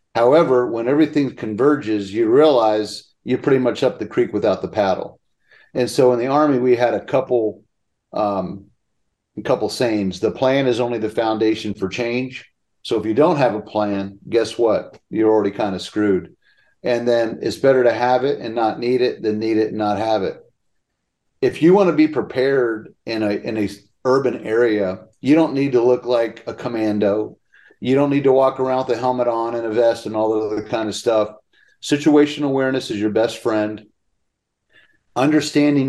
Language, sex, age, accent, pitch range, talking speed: English, male, 40-59, American, 110-135 Hz, 190 wpm